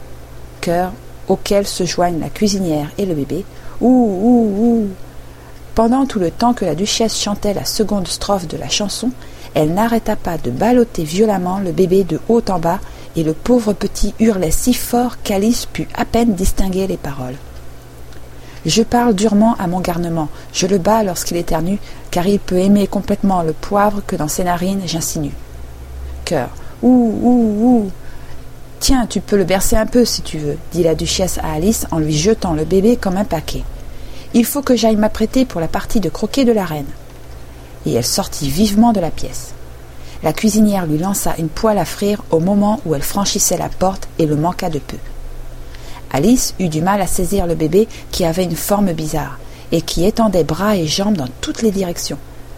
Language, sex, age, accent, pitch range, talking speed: French, female, 50-69, French, 155-215 Hz, 185 wpm